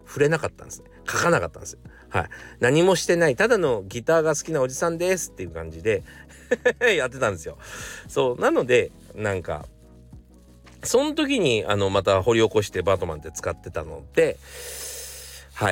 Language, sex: Japanese, male